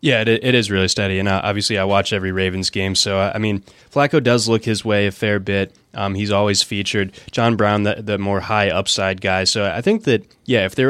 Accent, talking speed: American, 250 wpm